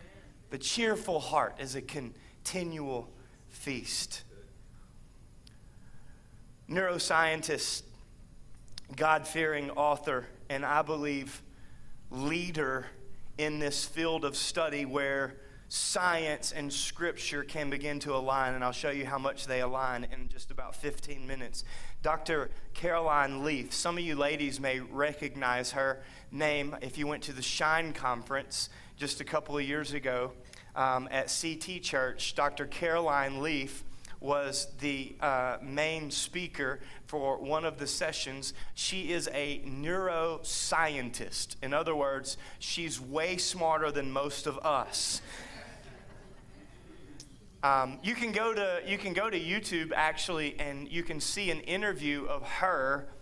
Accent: American